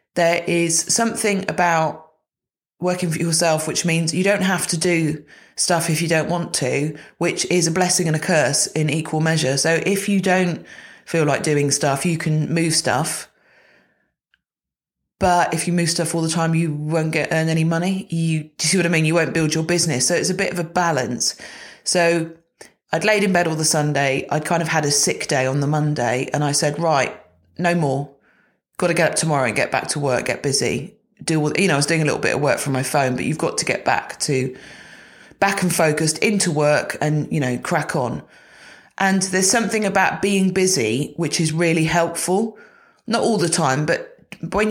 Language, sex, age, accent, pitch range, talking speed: English, female, 30-49, British, 150-175 Hz, 210 wpm